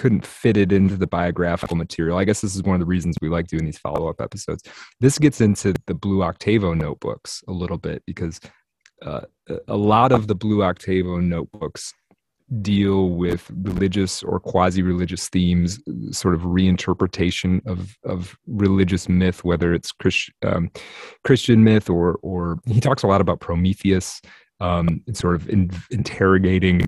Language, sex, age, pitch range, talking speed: English, male, 30-49, 90-105 Hz, 165 wpm